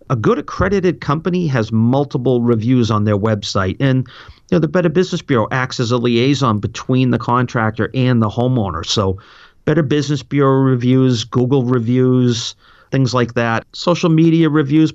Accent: American